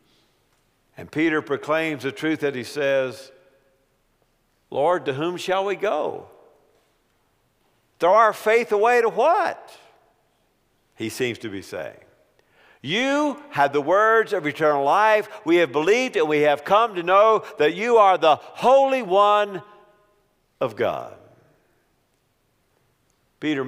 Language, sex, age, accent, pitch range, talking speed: English, male, 50-69, American, 140-205 Hz, 125 wpm